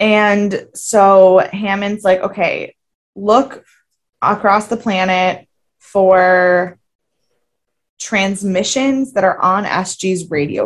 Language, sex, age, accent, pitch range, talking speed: English, female, 20-39, American, 175-210 Hz, 90 wpm